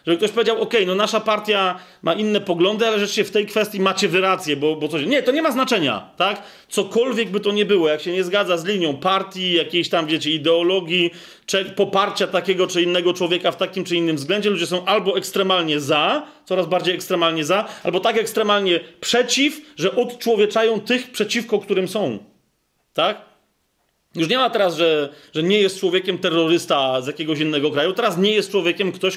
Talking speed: 190 wpm